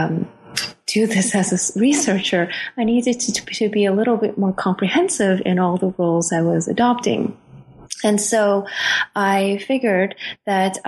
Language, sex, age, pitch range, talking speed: English, female, 30-49, 180-210 Hz, 155 wpm